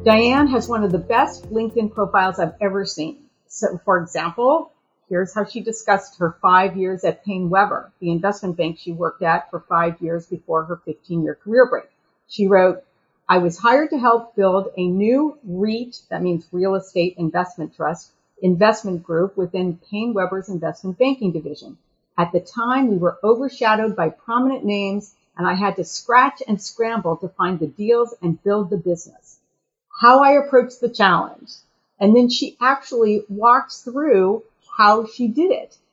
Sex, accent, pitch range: female, American, 180-235 Hz